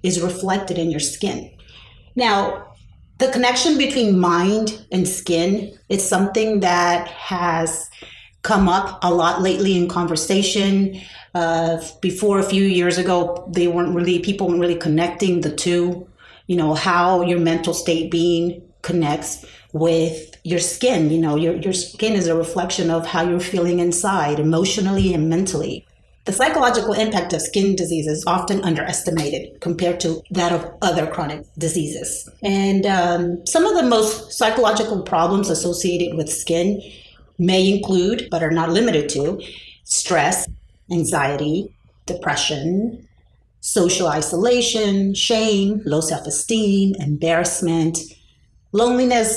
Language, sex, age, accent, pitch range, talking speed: English, female, 30-49, American, 165-195 Hz, 130 wpm